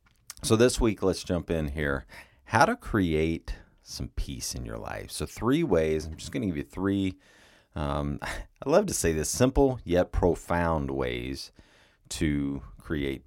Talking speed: 165 wpm